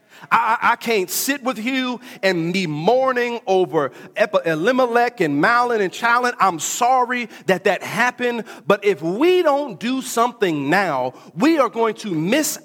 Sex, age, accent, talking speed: male, 40-59, American, 155 wpm